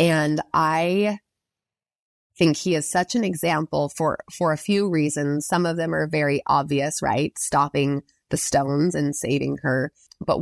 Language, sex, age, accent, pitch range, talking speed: English, female, 20-39, American, 145-180 Hz, 155 wpm